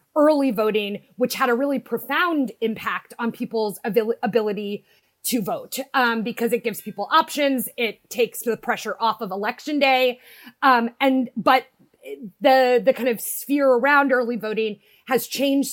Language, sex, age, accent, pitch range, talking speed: English, female, 30-49, American, 225-265 Hz, 155 wpm